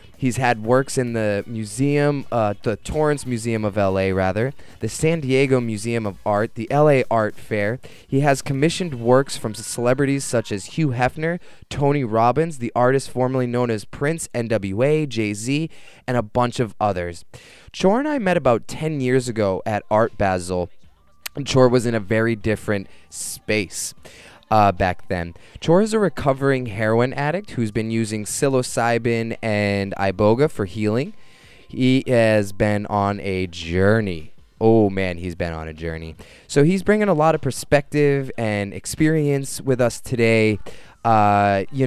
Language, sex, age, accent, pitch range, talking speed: English, male, 20-39, American, 105-135 Hz, 160 wpm